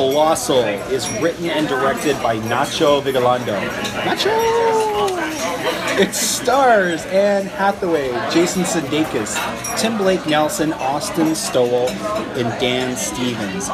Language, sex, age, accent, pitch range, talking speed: English, male, 30-49, American, 130-195 Hz, 100 wpm